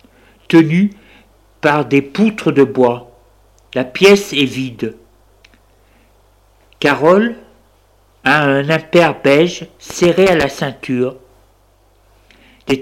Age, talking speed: 60-79, 95 wpm